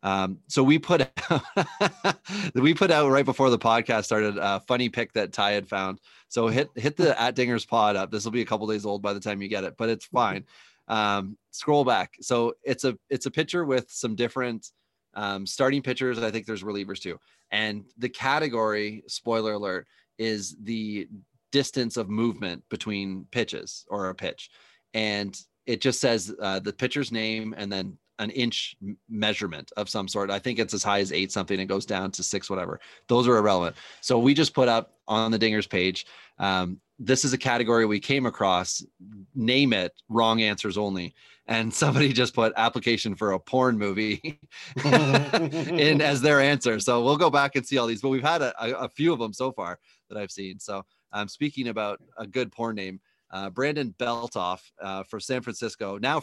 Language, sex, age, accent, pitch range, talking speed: English, male, 30-49, American, 100-130 Hz, 195 wpm